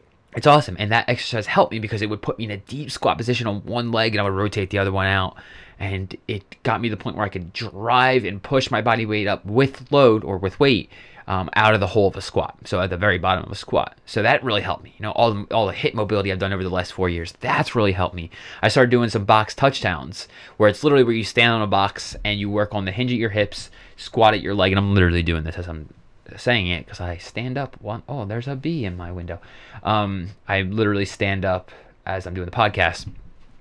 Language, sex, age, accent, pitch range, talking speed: English, male, 20-39, American, 95-115 Hz, 265 wpm